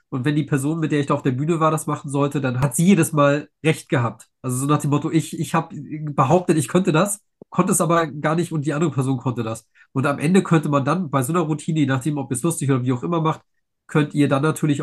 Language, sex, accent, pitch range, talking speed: German, male, German, 125-150 Hz, 285 wpm